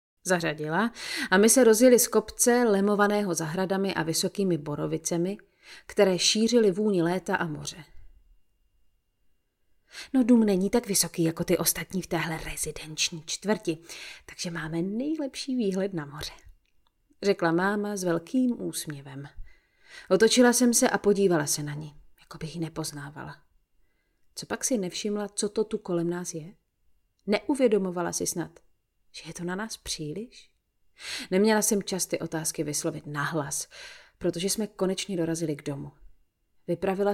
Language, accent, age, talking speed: Czech, native, 30-49, 135 wpm